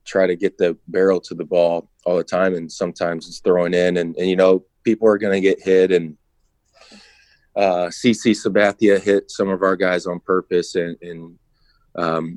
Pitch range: 85-95 Hz